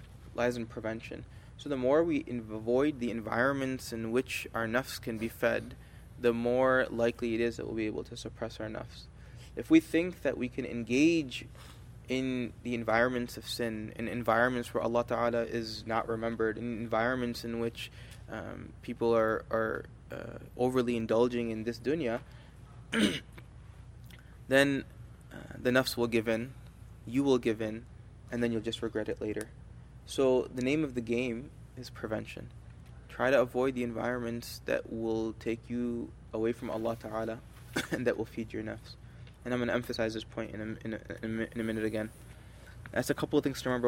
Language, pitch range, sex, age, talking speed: English, 115-125 Hz, male, 20-39, 180 wpm